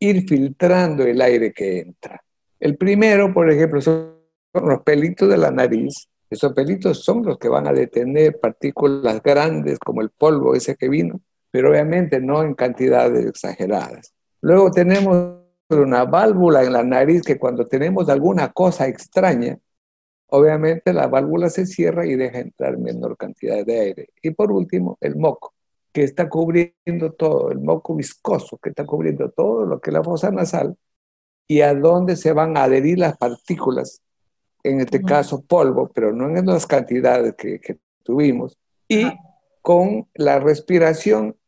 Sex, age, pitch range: male, 60-79, 130-175 Hz